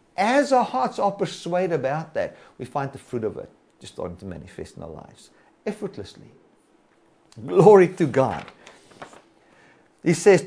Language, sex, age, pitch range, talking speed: English, male, 50-69, 140-200 Hz, 150 wpm